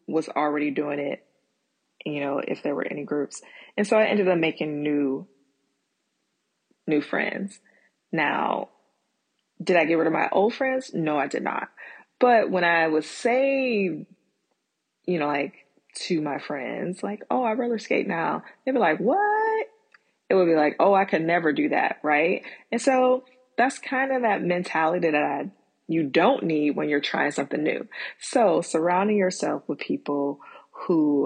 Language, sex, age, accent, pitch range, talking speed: English, female, 20-39, American, 150-230 Hz, 170 wpm